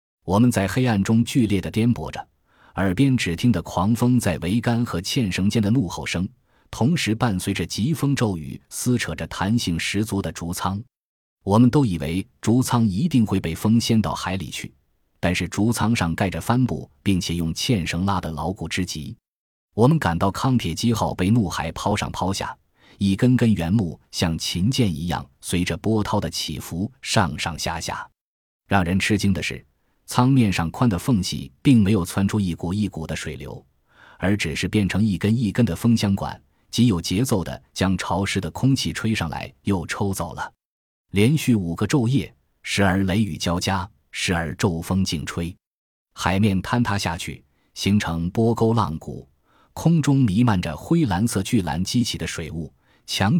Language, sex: Chinese, male